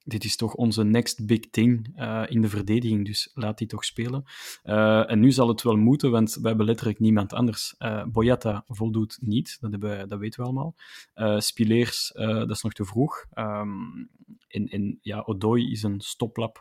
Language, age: Dutch, 20-39